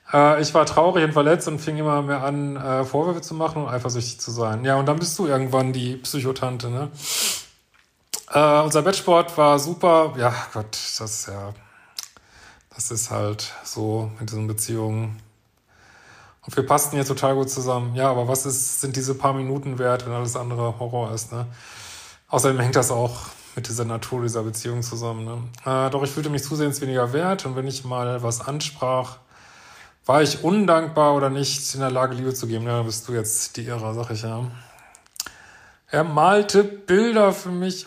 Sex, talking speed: male, 185 wpm